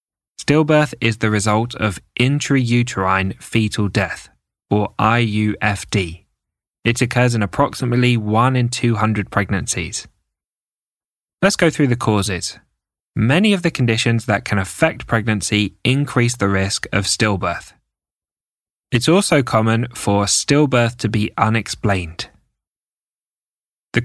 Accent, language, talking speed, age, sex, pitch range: British, English, 110 wpm, 10-29, male, 100-125 Hz